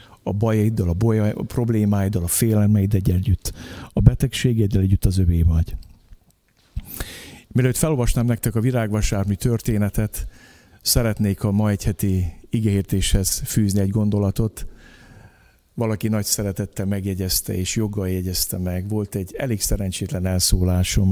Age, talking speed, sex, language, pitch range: 50-69, 120 wpm, male, Hungarian, 95-110 Hz